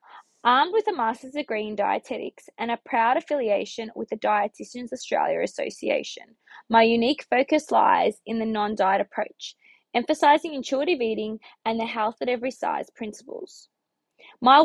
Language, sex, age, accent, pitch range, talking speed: English, female, 20-39, Australian, 220-285 Hz, 145 wpm